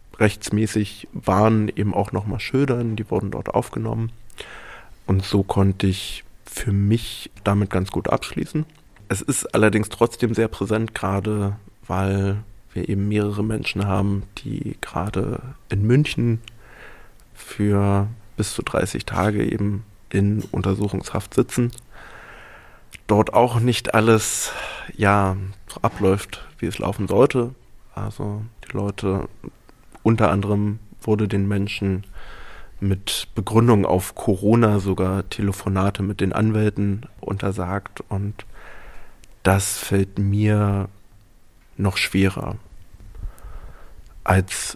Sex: male